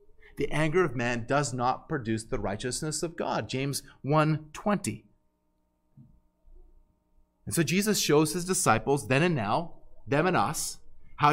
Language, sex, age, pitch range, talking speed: English, male, 30-49, 145-205 Hz, 140 wpm